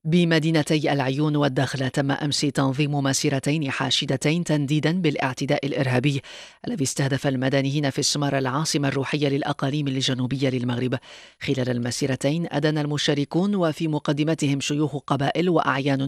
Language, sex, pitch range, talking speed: English, female, 135-150 Hz, 110 wpm